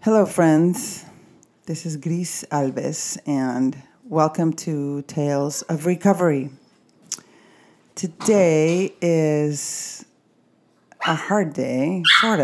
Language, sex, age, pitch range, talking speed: English, female, 40-59, 145-185 Hz, 85 wpm